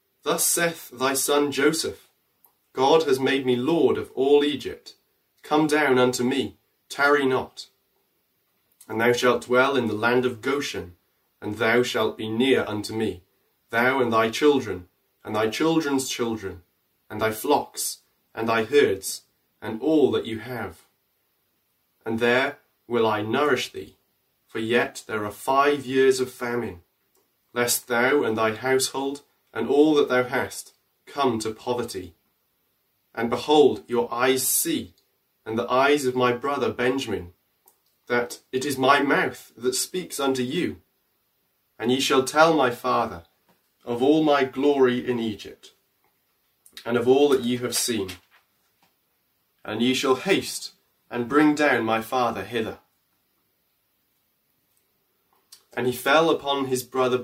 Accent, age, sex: British, 30-49, male